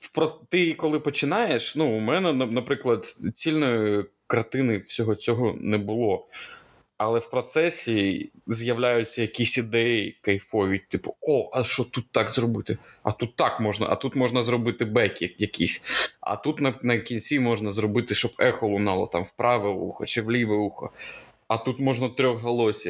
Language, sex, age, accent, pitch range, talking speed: Ukrainian, male, 20-39, native, 105-130 Hz, 155 wpm